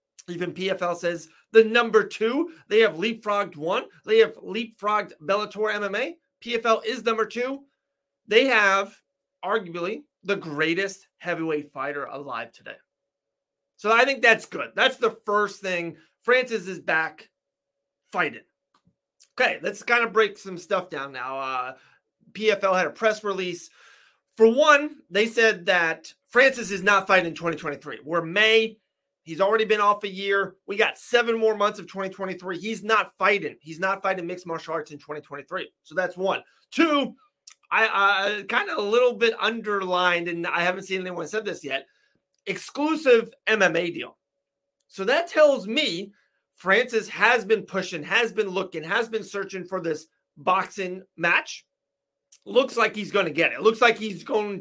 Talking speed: 160 wpm